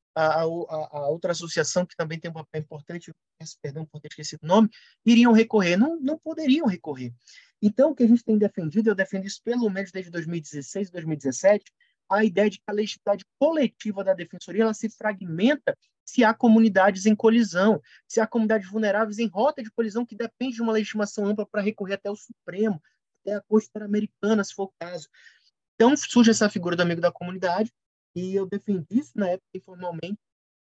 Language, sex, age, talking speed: Portuguese, male, 20-39, 190 wpm